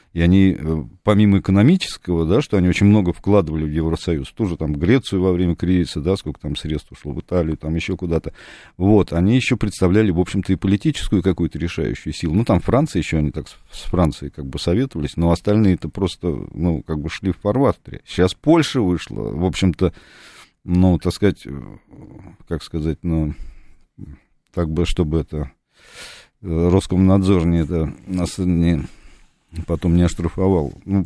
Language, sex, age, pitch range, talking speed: Russian, male, 40-59, 80-100 Hz, 155 wpm